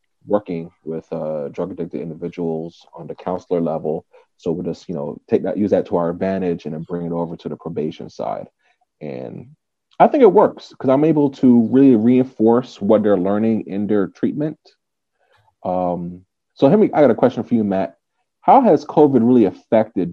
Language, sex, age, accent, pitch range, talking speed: English, male, 30-49, American, 90-115 Hz, 190 wpm